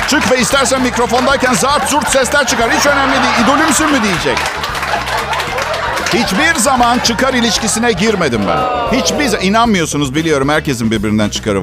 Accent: native